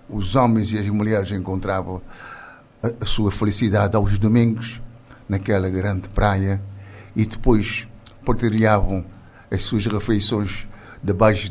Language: Portuguese